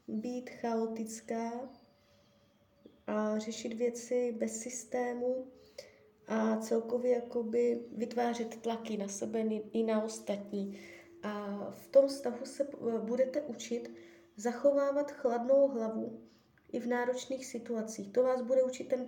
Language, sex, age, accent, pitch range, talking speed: Czech, female, 20-39, native, 205-250 Hz, 110 wpm